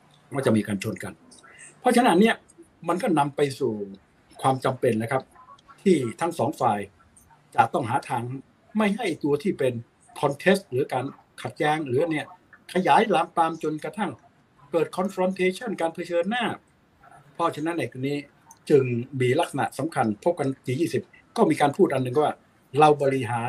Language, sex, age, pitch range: Thai, male, 60-79, 125-170 Hz